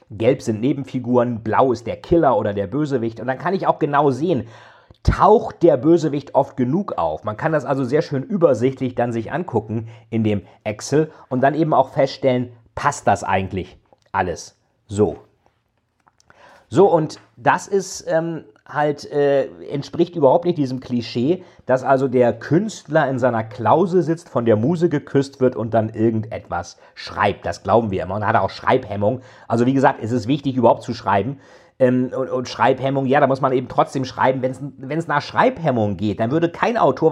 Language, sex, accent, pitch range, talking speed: German, male, German, 115-160 Hz, 180 wpm